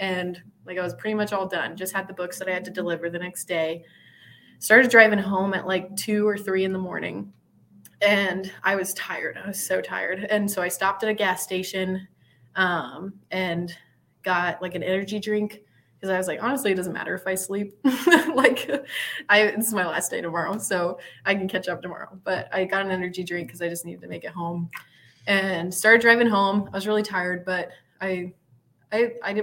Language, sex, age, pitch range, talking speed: English, female, 20-39, 175-210 Hz, 210 wpm